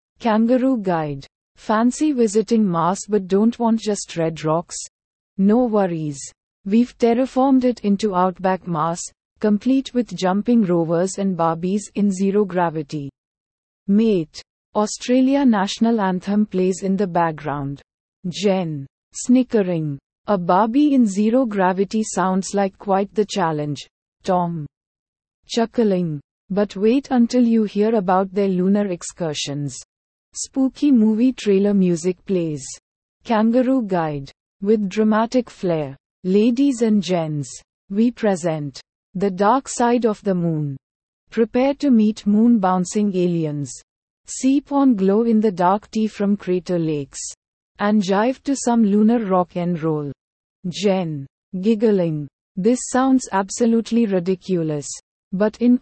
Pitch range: 170-225 Hz